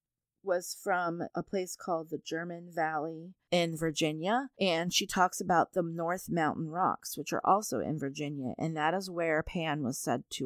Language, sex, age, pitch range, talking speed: English, female, 30-49, 155-190 Hz, 180 wpm